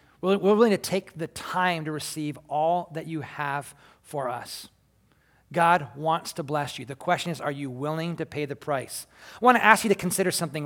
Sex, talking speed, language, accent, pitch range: male, 210 wpm, English, American, 150-190 Hz